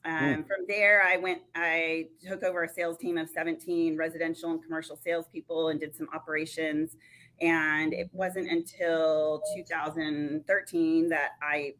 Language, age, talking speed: English, 30-49, 140 wpm